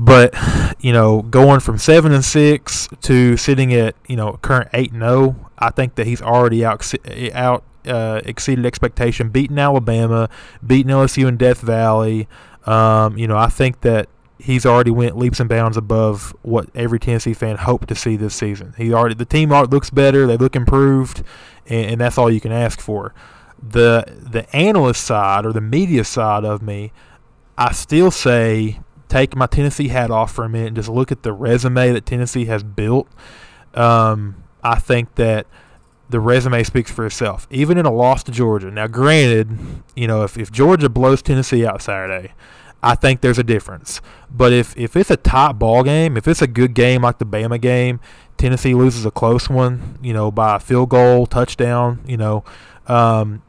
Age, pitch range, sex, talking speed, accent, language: 20-39, 110-130 Hz, male, 185 wpm, American, English